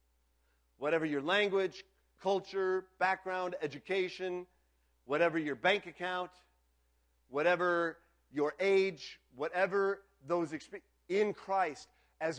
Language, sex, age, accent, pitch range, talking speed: English, male, 50-69, American, 135-205 Hz, 90 wpm